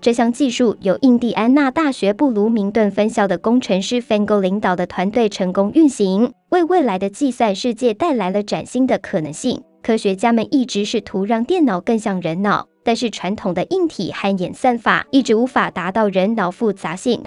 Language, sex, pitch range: Chinese, male, 200-255 Hz